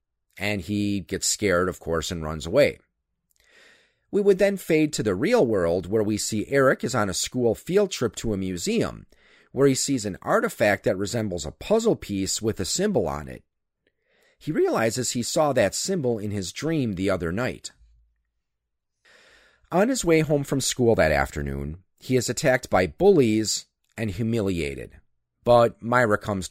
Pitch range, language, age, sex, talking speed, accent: 90-140 Hz, English, 40-59, male, 170 wpm, American